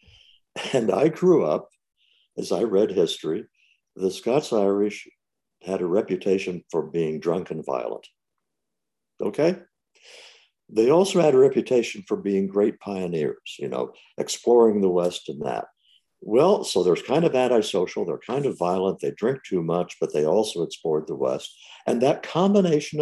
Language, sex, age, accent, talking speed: English, male, 60-79, American, 150 wpm